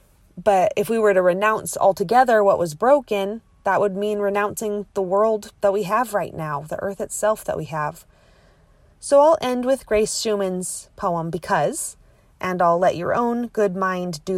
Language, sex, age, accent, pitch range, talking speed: English, female, 30-49, American, 155-215 Hz, 180 wpm